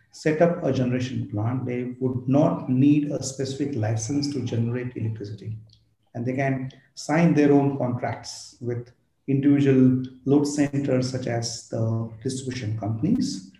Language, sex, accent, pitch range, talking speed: English, male, Indian, 115-145 Hz, 135 wpm